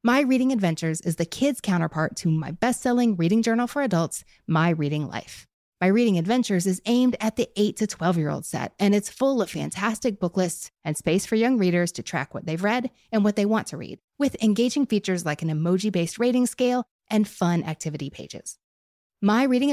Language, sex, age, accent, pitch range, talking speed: English, female, 30-49, American, 170-235 Hz, 200 wpm